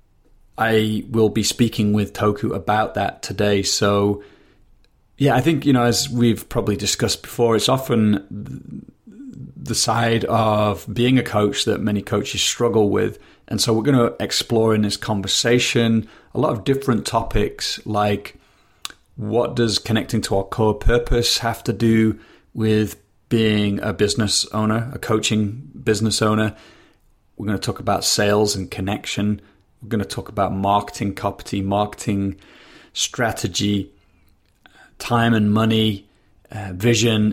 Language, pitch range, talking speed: English, 105-115 Hz, 145 wpm